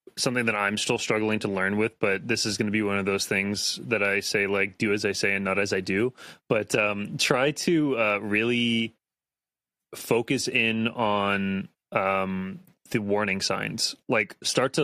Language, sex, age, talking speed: English, male, 20-39, 185 wpm